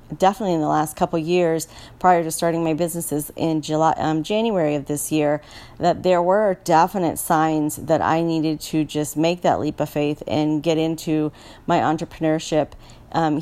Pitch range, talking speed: 150-175 Hz, 180 wpm